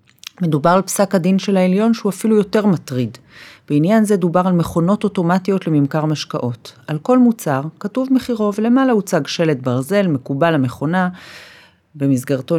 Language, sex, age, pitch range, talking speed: Hebrew, female, 40-59, 140-180 Hz, 145 wpm